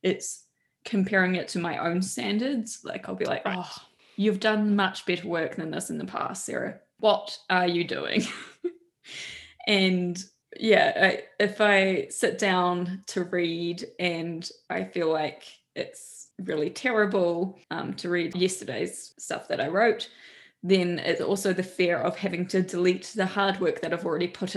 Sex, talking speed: female, 160 wpm